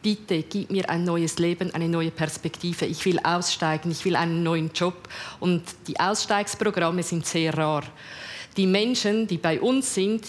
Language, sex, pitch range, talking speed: German, female, 175-215 Hz, 170 wpm